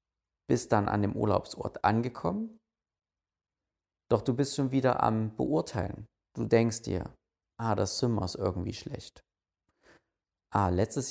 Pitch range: 95-130 Hz